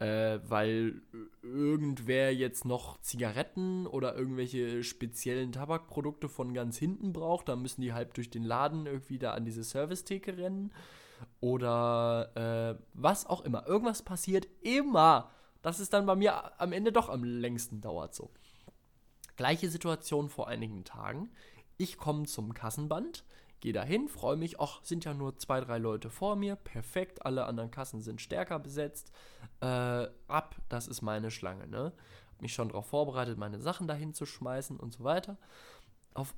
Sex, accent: male, German